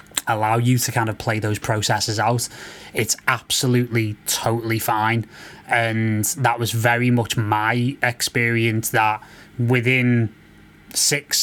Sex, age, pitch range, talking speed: male, 20-39, 115-135 Hz, 120 wpm